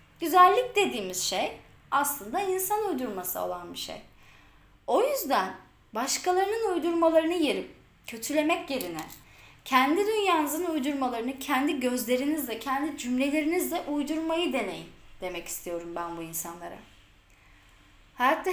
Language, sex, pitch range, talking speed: Turkish, female, 185-310 Hz, 100 wpm